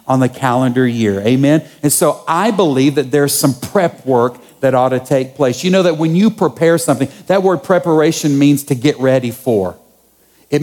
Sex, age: male, 50-69